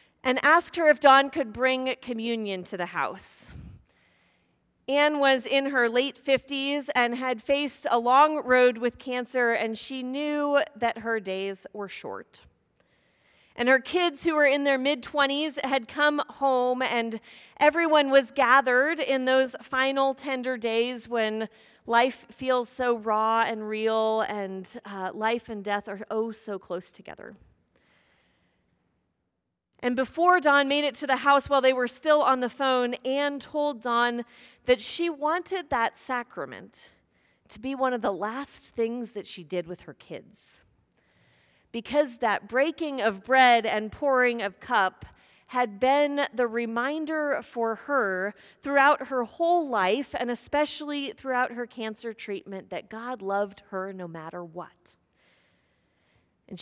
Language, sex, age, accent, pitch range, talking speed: English, female, 40-59, American, 225-280 Hz, 145 wpm